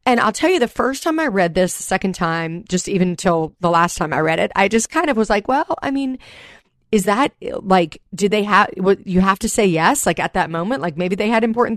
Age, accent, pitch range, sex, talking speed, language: 40-59, American, 175-235 Hz, female, 265 wpm, English